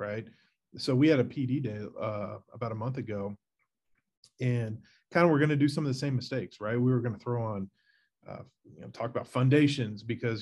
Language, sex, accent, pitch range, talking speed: English, male, American, 120-140 Hz, 220 wpm